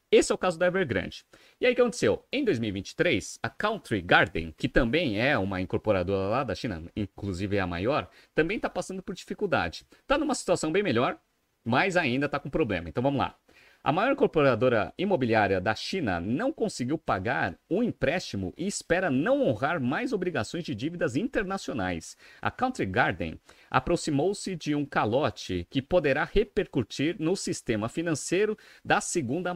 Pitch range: 110-175 Hz